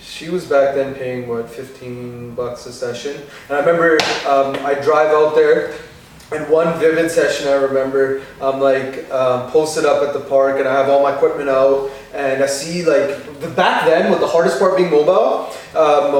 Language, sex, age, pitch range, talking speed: English, male, 20-39, 135-195 Hz, 195 wpm